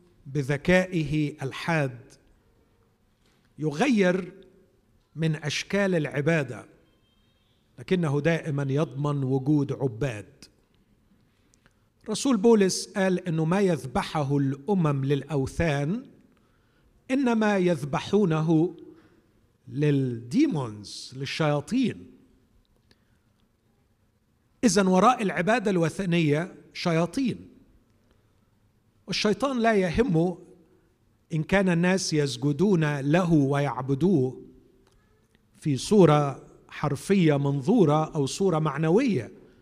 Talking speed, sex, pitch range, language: 65 wpm, male, 135-180 Hz, Arabic